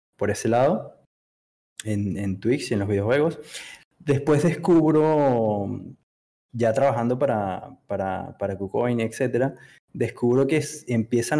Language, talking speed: Spanish, 120 wpm